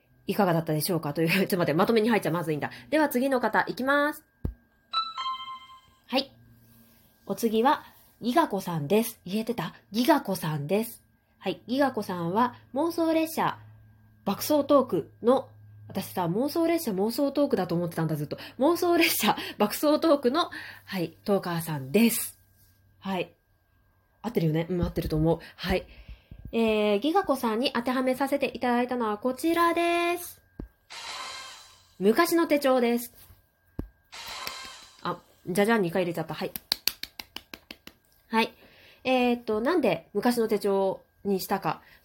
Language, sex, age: Japanese, female, 20-39